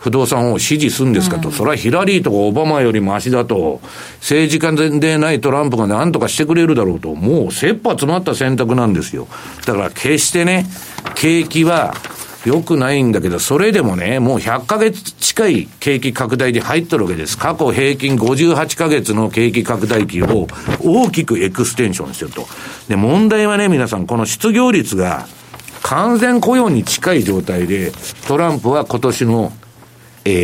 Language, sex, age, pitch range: Japanese, male, 60-79, 120-195 Hz